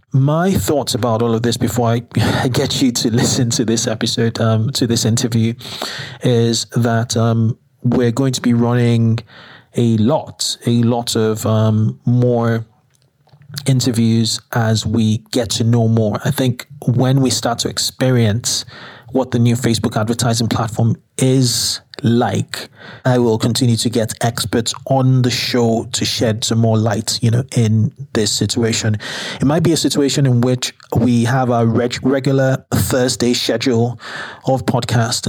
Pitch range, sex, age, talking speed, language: 115-130 Hz, male, 30-49, 155 wpm, English